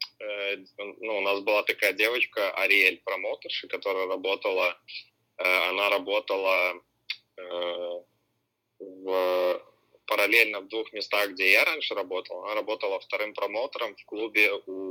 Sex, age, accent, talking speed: male, 20-39, native, 115 wpm